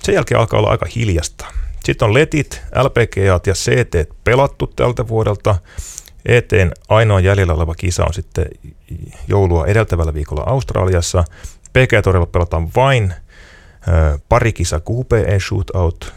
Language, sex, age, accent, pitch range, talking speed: Finnish, male, 30-49, native, 80-100 Hz, 130 wpm